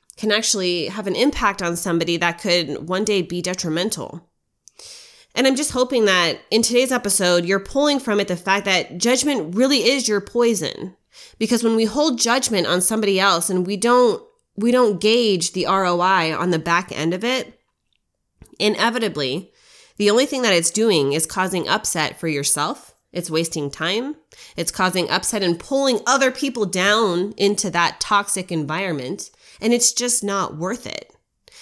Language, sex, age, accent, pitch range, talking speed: English, female, 20-39, American, 185-245 Hz, 165 wpm